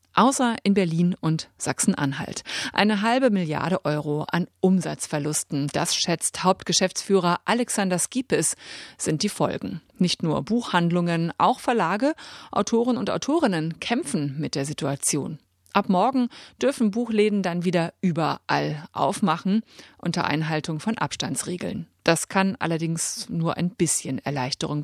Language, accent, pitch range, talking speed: German, German, 160-210 Hz, 120 wpm